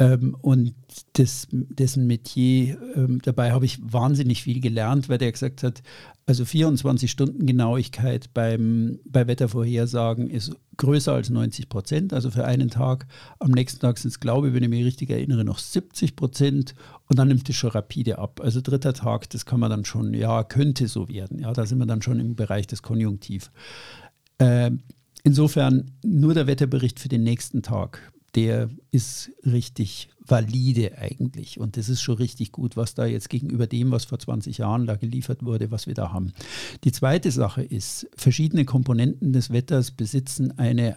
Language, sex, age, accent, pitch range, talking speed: German, male, 50-69, German, 115-135 Hz, 170 wpm